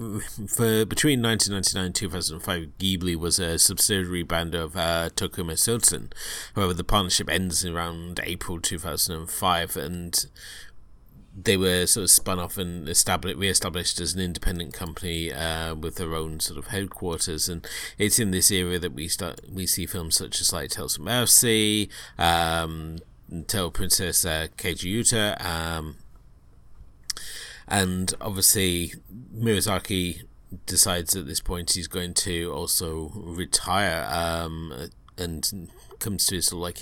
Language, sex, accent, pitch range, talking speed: English, male, British, 85-100 Hz, 135 wpm